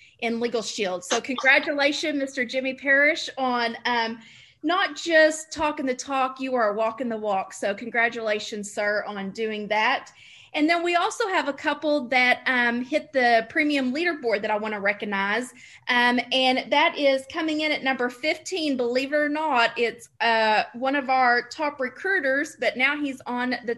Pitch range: 230-285 Hz